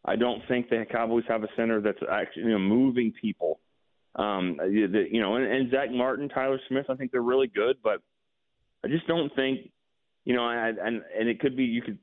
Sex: male